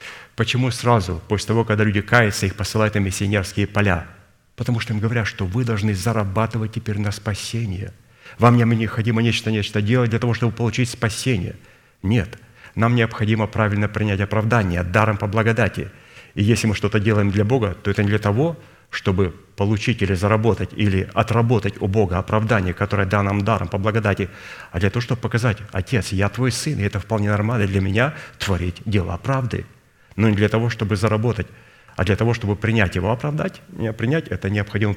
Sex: male